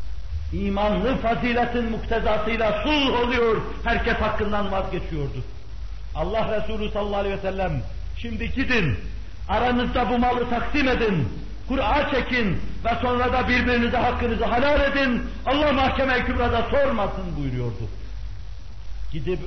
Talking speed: 110 wpm